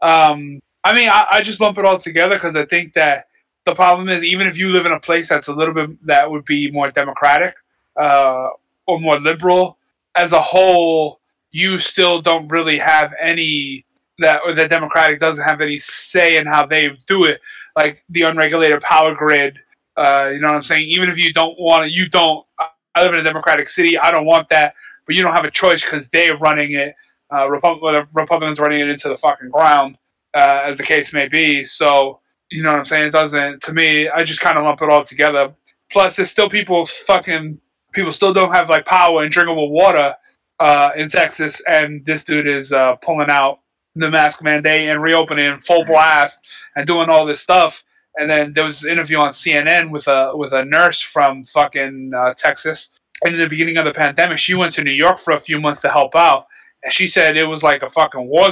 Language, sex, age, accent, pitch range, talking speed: English, male, 20-39, American, 145-170 Hz, 215 wpm